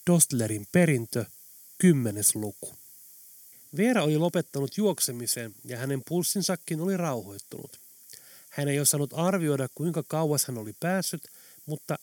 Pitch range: 125-175 Hz